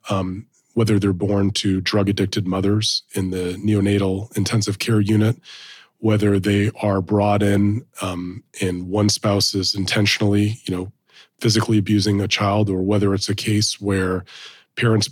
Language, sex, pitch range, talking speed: English, male, 100-110 Hz, 145 wpm